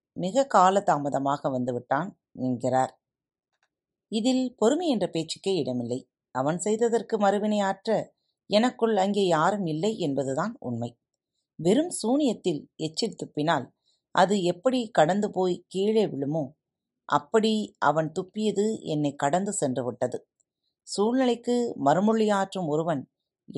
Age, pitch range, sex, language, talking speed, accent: 30-49, 140-210 Hz, female, Tamil, 100 wpm, native